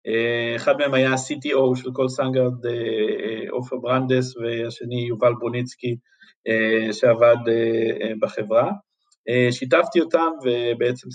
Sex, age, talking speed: male, 50-69, 90 wpm